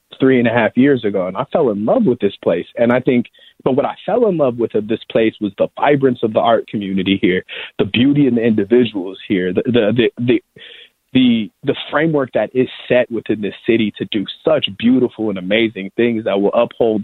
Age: 30-49